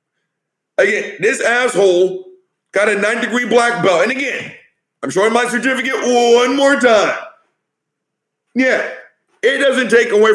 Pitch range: 200-265 Hz